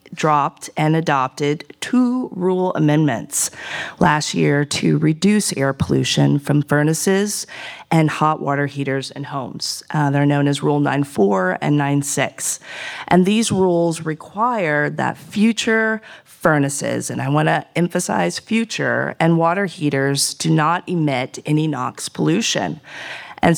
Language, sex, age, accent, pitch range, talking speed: English, female, 40-59, American, 145-185 Hz, 130 wpm